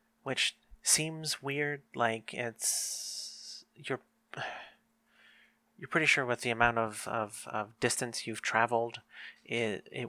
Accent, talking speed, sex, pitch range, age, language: American, 120 wpm, male, 110-135 Hz, 30-49, English